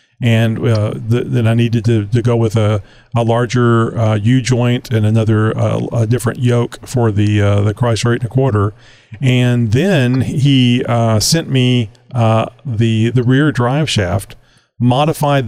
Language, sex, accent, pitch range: English, male, American, 110-135 Hz